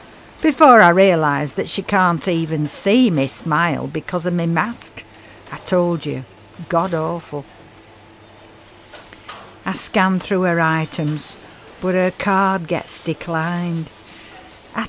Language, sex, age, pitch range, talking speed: English, female, 60-79, 150-205 Hz, 120 wpm